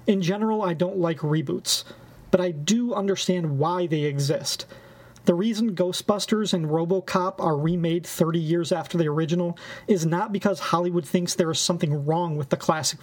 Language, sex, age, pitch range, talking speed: English, male, 30-49, 170-195 Hz, 170 wpm